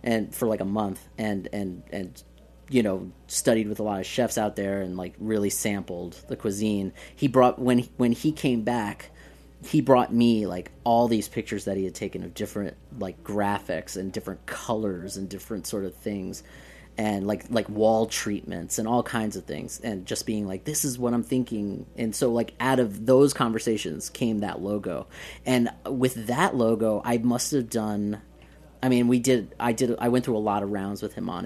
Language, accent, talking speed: English, American, 205 wpm